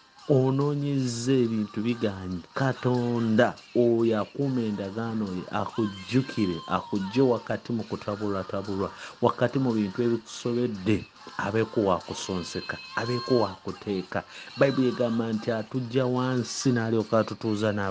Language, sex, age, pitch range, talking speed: English, male, 50-69, 110-135 Hz, 95 wpm